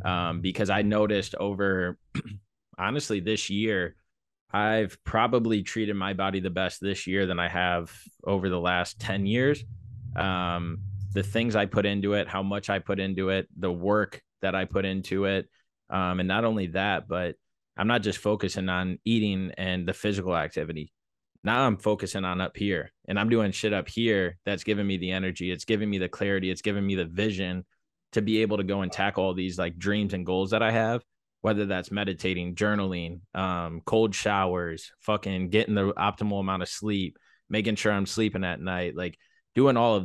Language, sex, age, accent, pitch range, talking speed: English, male, 20-39, American, 95-105 Hz, 190 wpm